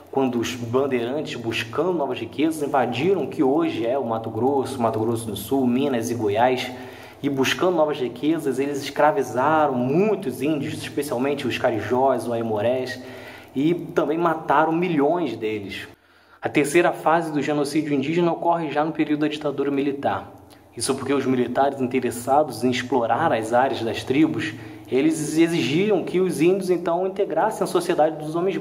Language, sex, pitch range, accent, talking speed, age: English, male, 125-160 Hz, Brazilian, 155 wpm, 20-39